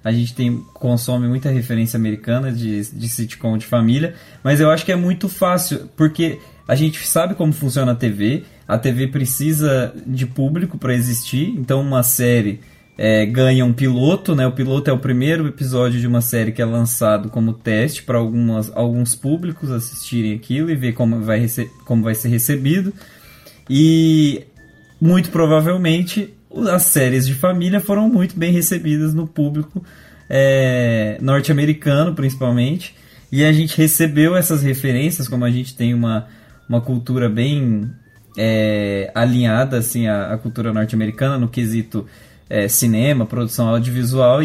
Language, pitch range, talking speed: Portuguese, 120-155 Hz, 140 wpm